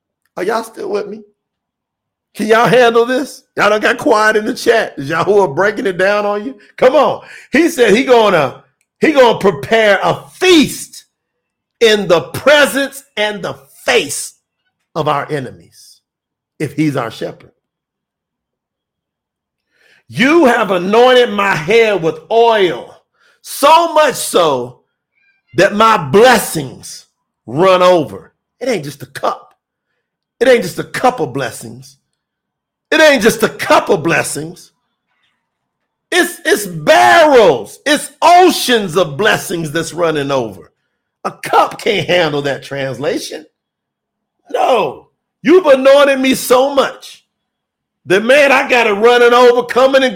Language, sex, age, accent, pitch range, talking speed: English, male, 50-69, American, 185-265 Hz, 140 wpm